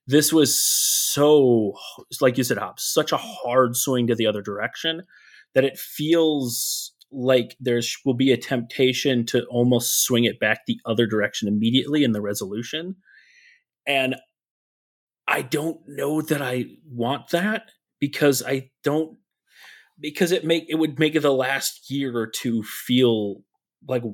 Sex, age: male, 30-49